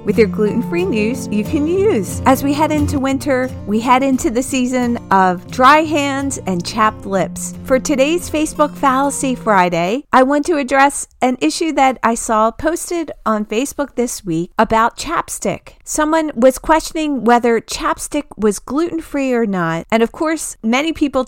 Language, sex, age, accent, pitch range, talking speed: English, female, 40-59, American, 200-270 Hz, 165 wpm